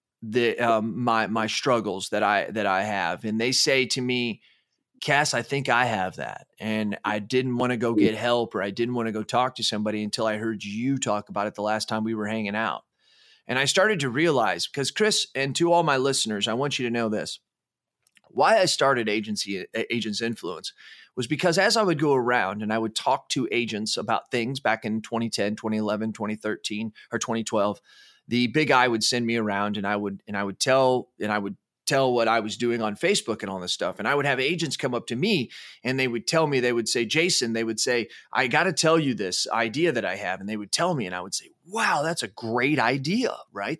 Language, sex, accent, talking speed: English, male, American, 235 wpm